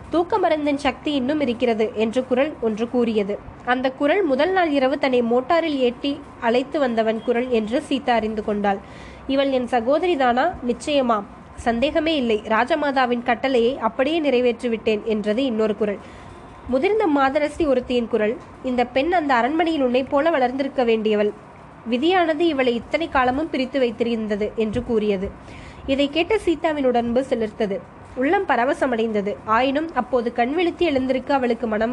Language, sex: Tamil, female